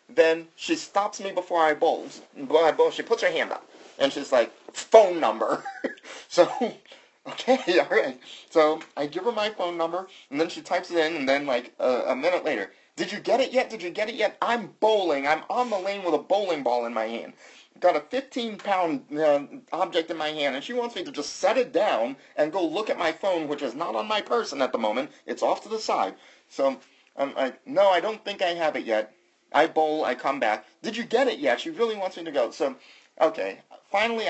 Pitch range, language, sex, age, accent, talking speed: 145-215 Hz, English, male, 30-49, American, 230 wpm